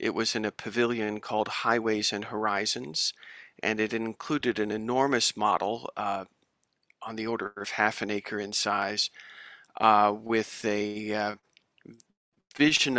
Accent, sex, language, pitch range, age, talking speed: American, male, English, 105-125 Hz, 40-59, 140 wpm